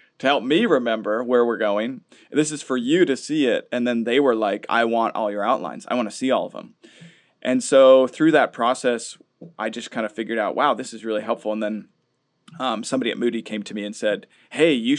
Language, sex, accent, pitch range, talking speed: English, male, American, 110-125 Hz, 240 wpm